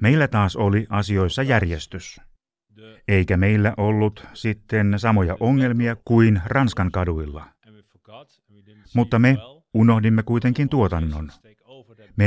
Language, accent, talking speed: Finnish, native, 100 wpm